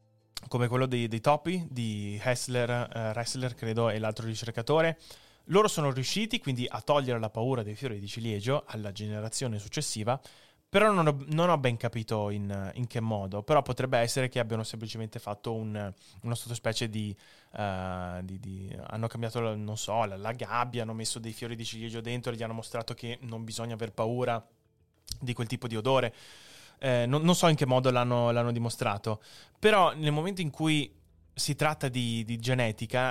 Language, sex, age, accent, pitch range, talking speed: Italian, male, 20-39, native, 110-130 Hz, 180 wpm